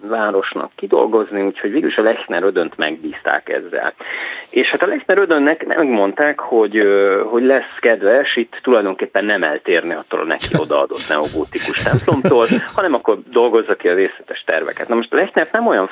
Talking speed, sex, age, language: 155 wpm, male, 30-49, Hungarian